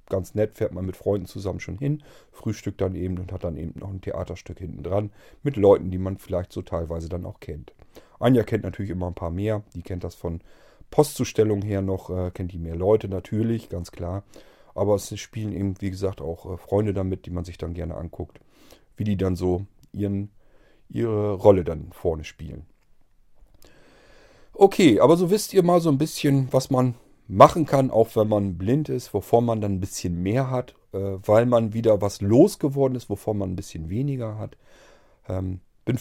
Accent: German